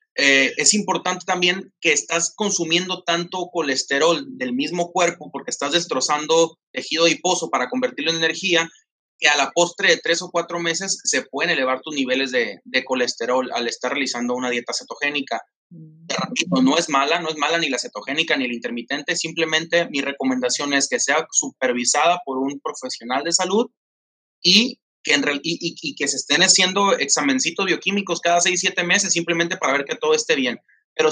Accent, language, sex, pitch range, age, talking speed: Mexican, Spanish, male, 145-185 Hz, 30-49, 175 wpm